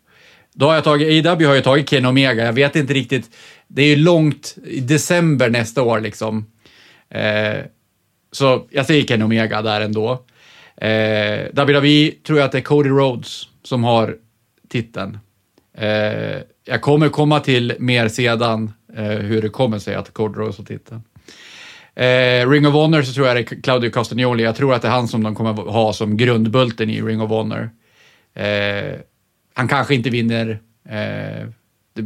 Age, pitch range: 30-49, 110-135 Hz